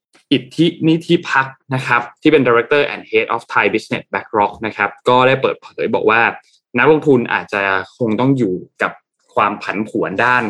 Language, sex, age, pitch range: Thai, male, 20-39, 110-140 Hz